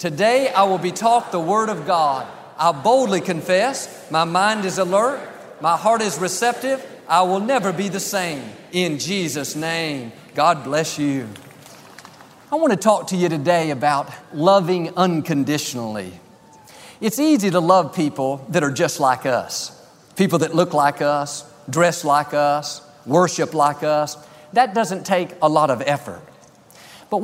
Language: English